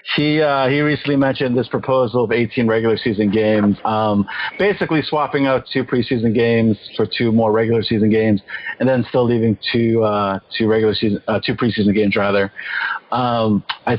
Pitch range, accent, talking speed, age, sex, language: 110-130 Hz, American, 175 wpm, 40-59, male, English